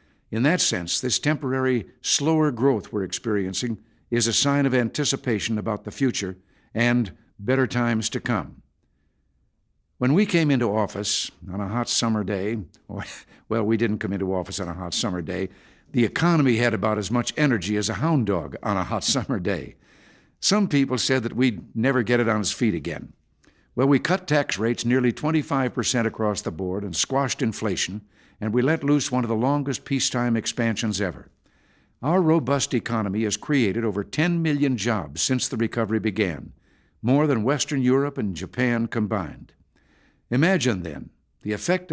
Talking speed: 170 wpm